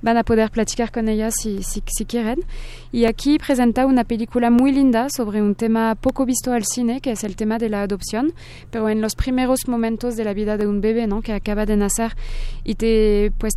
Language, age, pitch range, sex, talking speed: Spanish, 20-39, 205-240 Hz, female, 220 wpm